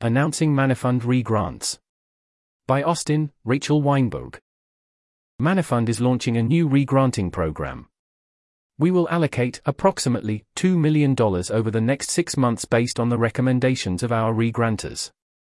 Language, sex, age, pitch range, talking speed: English, male, 40-59, 105-140 Hz, 125 wpm